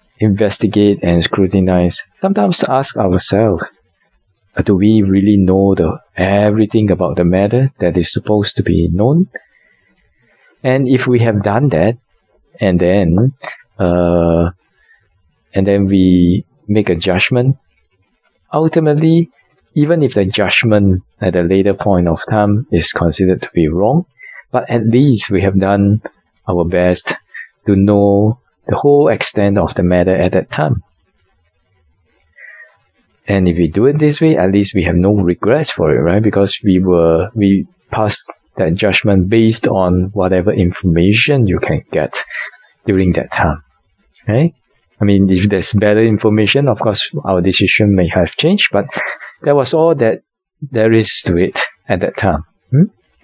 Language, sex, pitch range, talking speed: English, male, 90-120 Hz, 150 wpm